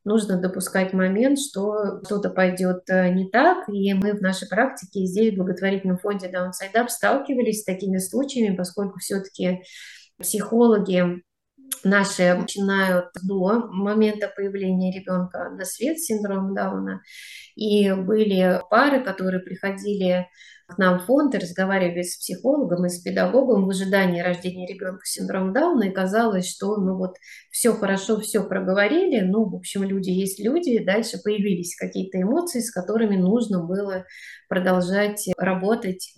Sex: female